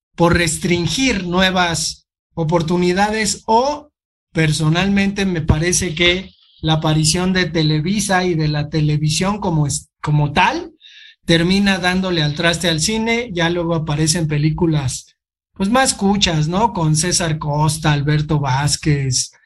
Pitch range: 160-200 Hz